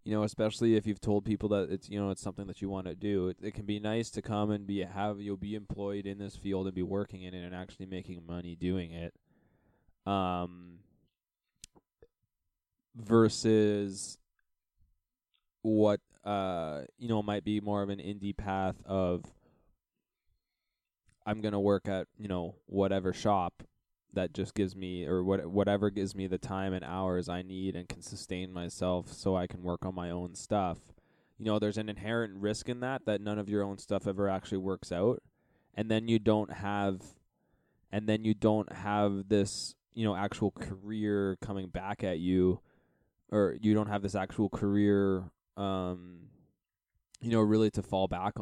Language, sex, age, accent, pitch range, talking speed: English, male, 10-29, American, 95-105 Hz, 180 wpm